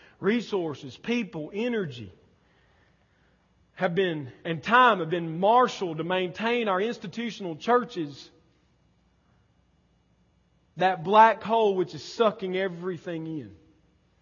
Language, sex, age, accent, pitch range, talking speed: English, male, 40-59, American, 170-225 Hz, 95 wpm